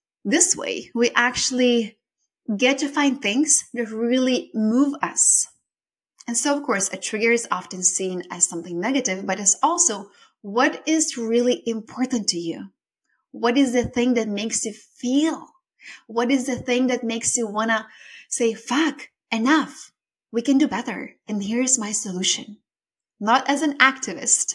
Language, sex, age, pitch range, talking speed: English, female, 20-39, 205-255 Hz, 160 wpm